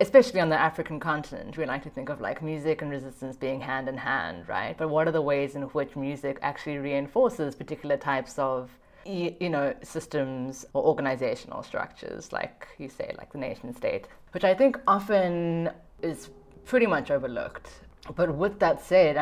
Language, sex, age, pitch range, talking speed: English, female, 30-49, 140-175 Hz, 180 wpm